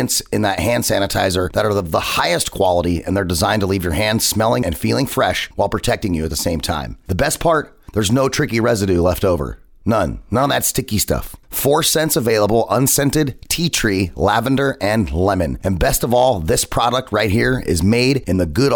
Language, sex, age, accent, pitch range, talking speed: English, male, 30-49, American, 95-125 Hz, 210 wpm